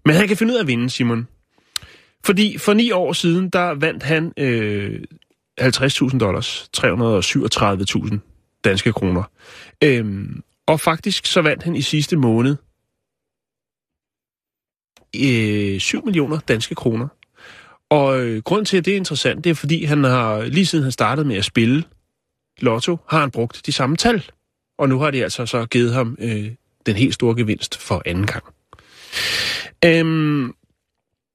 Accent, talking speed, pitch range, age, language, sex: native, 155 wpm, 115-160 Hz, 30-49, Danish, male